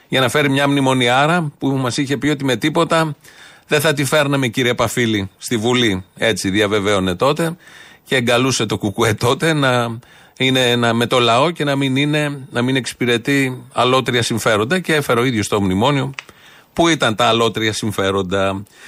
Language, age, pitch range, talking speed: Greek, 40-59, 110-150 Hz, 170 wpm